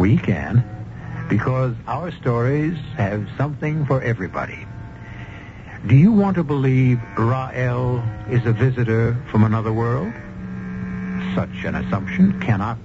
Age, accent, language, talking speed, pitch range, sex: 60-79, American, English, 115 wpm, 110-140 Hz, male